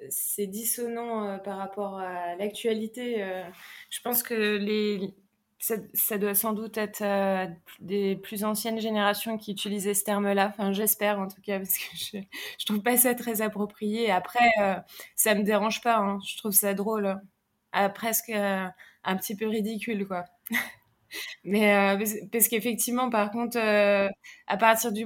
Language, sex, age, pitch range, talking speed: French, female, 20-39, 200-230 Hz, 155 wpm